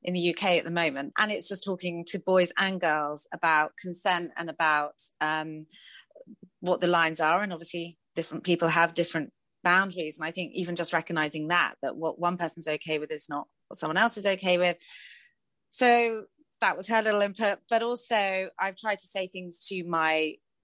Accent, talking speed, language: British, 190 wpm, English